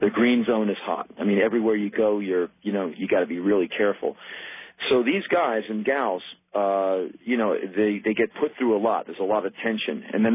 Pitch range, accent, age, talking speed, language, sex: 100-120 Hz, American, 40-59, 230 wpm, English, male